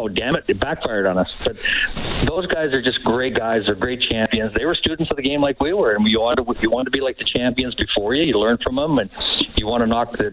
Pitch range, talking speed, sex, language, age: 110-140 Hz, 285 wpm, male, English, 50-69